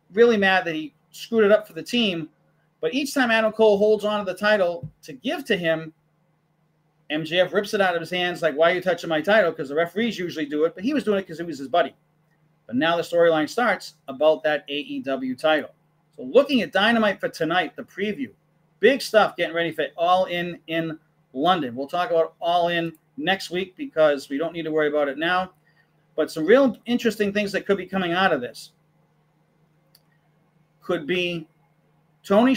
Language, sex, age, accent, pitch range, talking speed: English, male, 30-49, American, 160-205 Hz, 205 wpm